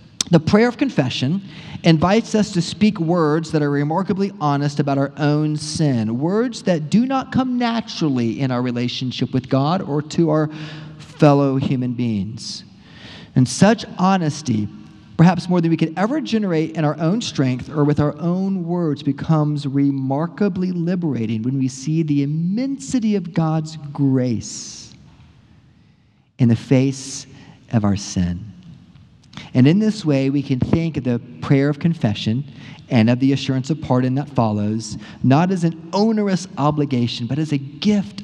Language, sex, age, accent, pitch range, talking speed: English, male, 40-59, American, 130-175 Hz, 155 wpm